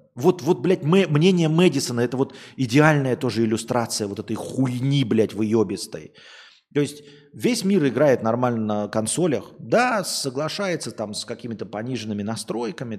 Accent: native